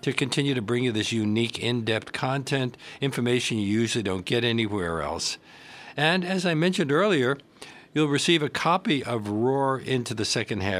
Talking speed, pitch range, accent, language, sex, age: 170 wpm, 100-140 Hz, American, English, male, 60-79